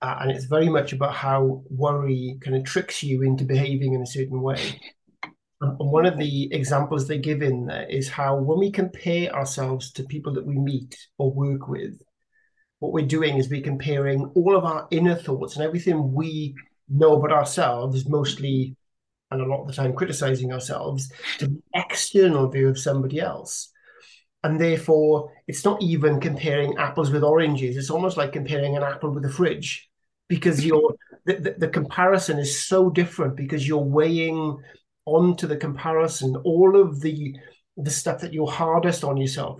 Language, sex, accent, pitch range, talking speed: English, male, British, 140-160 Hz, 180 wpm